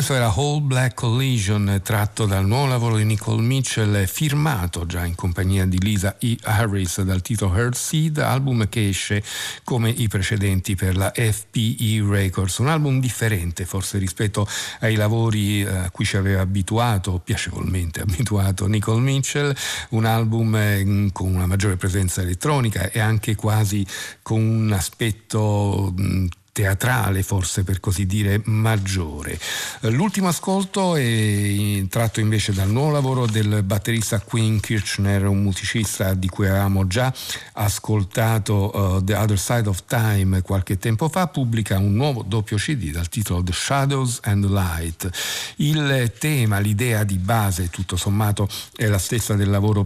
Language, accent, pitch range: Italian, native, 95-115 Hz